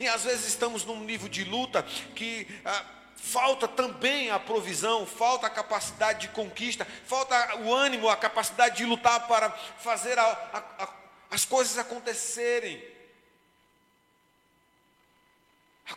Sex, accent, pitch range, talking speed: male, Brazilian, 220-255 Hz, 130 wpm